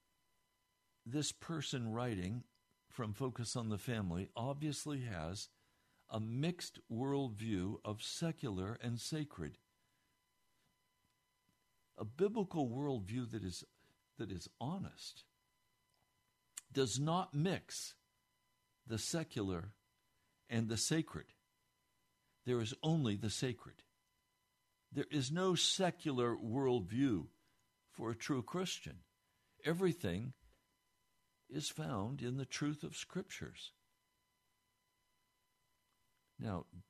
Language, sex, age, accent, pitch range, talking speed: English, male, 60-79, American, 100-140 Hz, 90 wpm